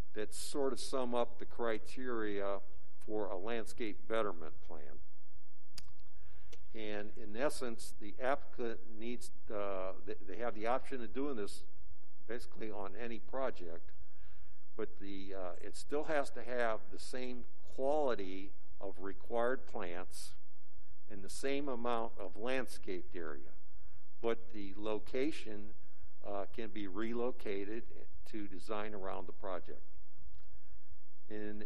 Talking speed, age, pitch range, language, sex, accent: 120 wpm, 60-79, 95-115 Hz, English, male, American